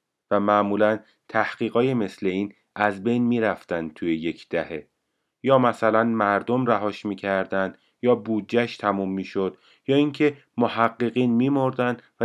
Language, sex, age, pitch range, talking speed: Persian, male, 30-49, 95-120 Hz, 125 wpm